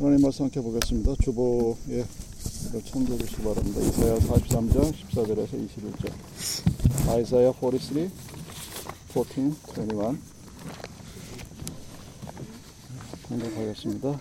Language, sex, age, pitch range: Korean, male, 50-69, 110-125 Hz